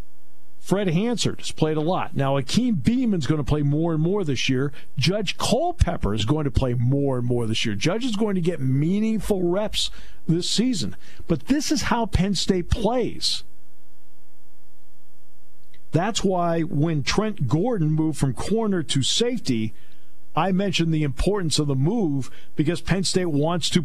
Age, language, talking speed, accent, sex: 50-69, English, 165 wpm, American, male